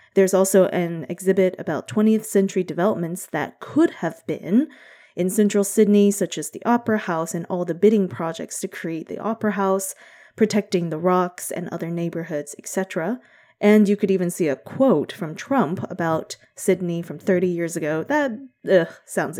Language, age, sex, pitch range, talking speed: English, 20-39, female, 170-220 Hz, 165 wpm